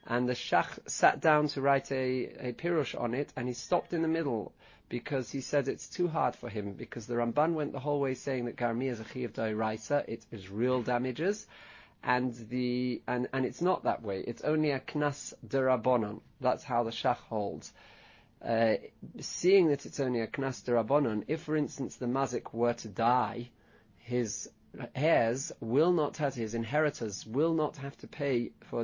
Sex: male